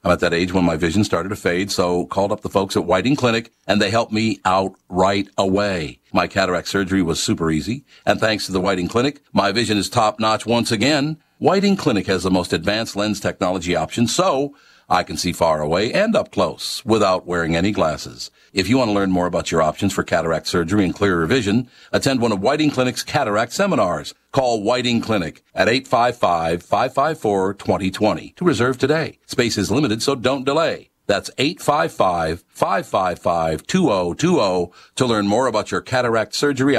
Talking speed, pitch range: 180 wpm, 90-115 Hz